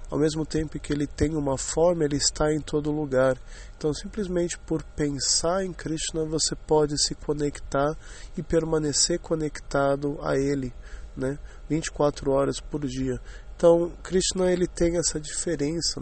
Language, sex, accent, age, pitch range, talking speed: English, male, Brazilian, 20-39, 135-160 Hz, 140 wpm